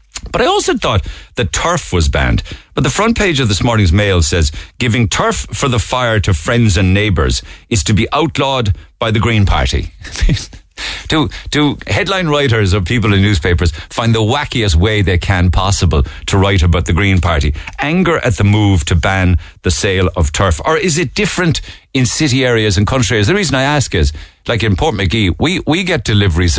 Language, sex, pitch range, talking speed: English, male, 85-115 Hz, 195 wpm